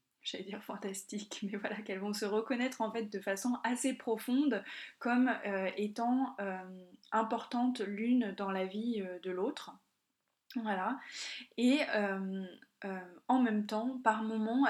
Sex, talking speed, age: female, 145 wpm, 20-39